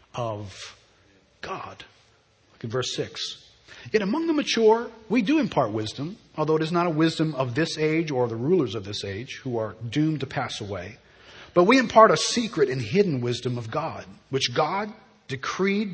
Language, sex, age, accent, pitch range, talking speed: English, male, 40-59, American, 120-170 Hz, 180 wpm